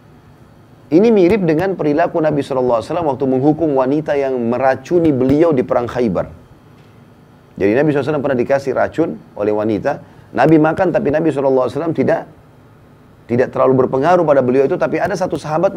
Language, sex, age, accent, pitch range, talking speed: Indonesian, male, 30-49, native, 120-155 Hz, 150 wpm